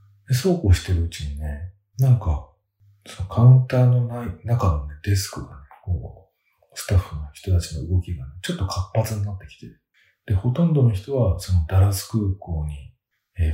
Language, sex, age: Japanese, male, 40-59